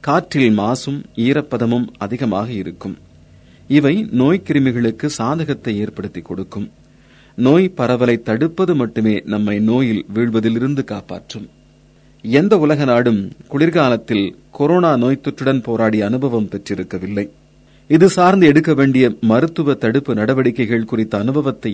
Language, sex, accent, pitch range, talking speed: Tamil, male, native, 105-140 Hz, 100 wpm